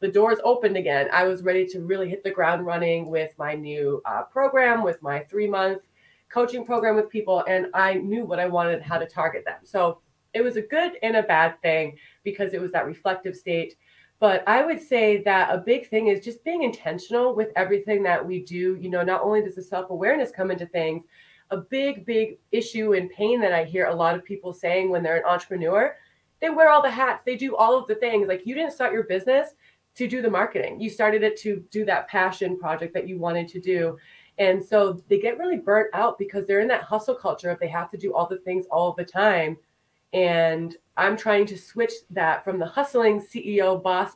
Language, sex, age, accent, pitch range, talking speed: English, female, 30-49, American, 175-220 Hz, 225 wpm